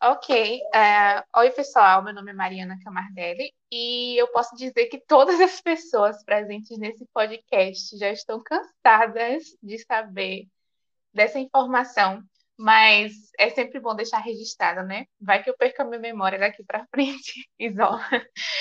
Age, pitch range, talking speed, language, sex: 20-39, 210-265 Hz, 145 wpm, Portuguese, female